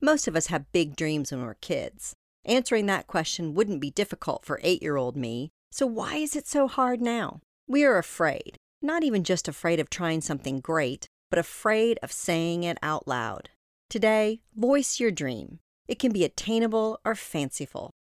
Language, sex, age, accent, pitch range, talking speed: English, female, 40-59, American, 155-225 Hz, 175 wpm